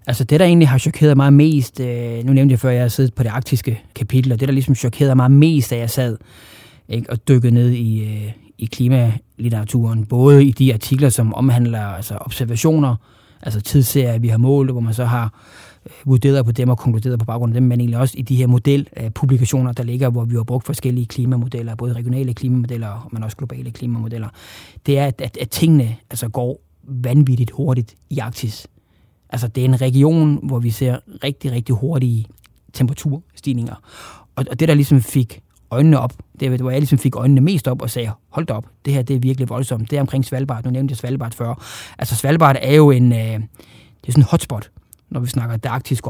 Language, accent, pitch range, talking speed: Danish, native, 115-135 Hz, 205 wpm